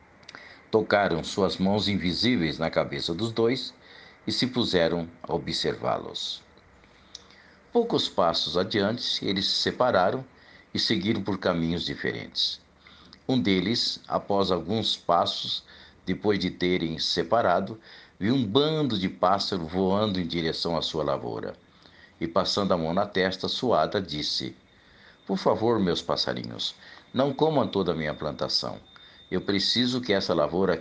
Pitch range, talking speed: 85-105 Hz, 130 wpm